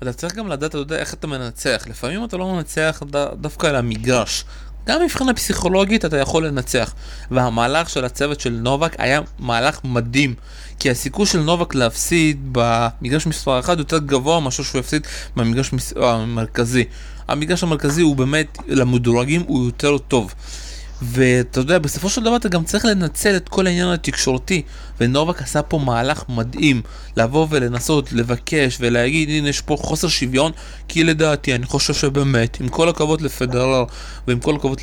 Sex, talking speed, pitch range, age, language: male, 160 wpm, 130-170 Hz, 20-39, Hebrew